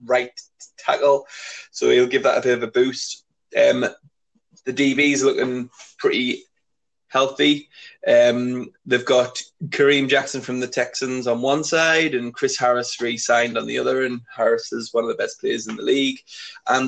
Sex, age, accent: male, 20-39, British